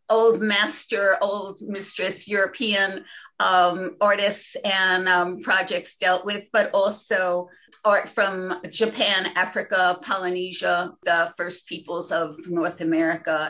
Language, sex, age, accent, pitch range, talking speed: English, female, 50-69, American, 180-230 Hz, 110 wpm